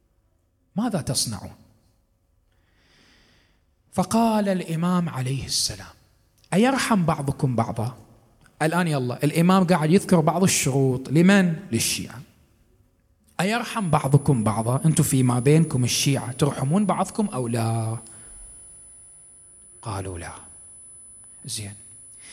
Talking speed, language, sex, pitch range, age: 85 wpm, Arabic, male, 110-165 Hz, 30-49